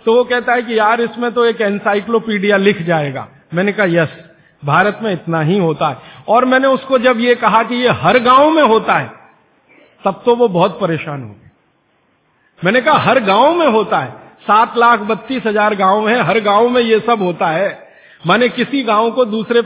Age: 50-69